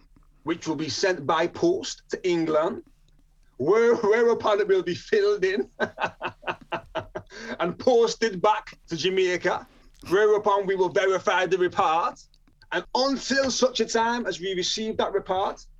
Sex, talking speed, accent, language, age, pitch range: male, 135 wpm, British, English, 30-49, 150-225 Hz